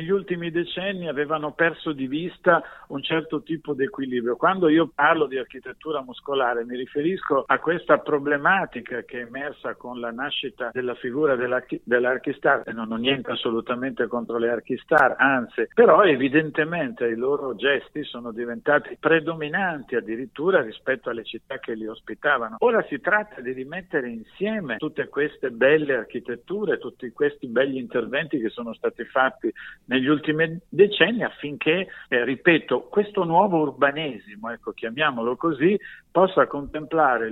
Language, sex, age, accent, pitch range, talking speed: Italian, male, 50-69, native, 125-175 Hz, 140 wpm